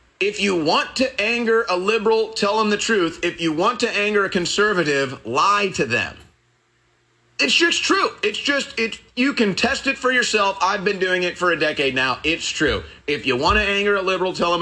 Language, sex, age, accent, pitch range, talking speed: English, male, 30-49, American, 140-185 Hz, 210 wpm